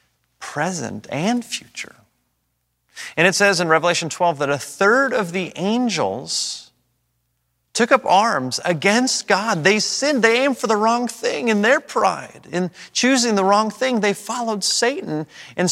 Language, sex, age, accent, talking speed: English, male, 30-49, American, 155 wpm